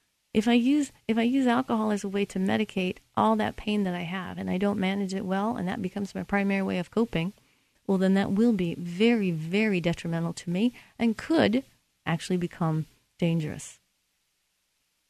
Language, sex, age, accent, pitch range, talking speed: English, female, 40-59, American, 170-215 Hz, 190 wpm